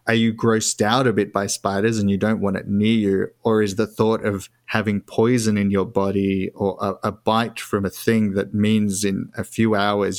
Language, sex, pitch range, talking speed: English, male, 100-110 Hz, 225 wpm